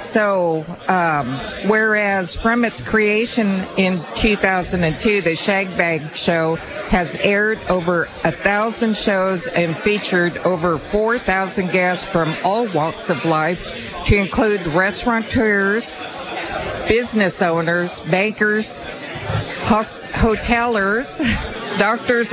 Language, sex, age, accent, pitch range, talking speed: English, female, 60-79, American, 170-210 Hz, 95 wpm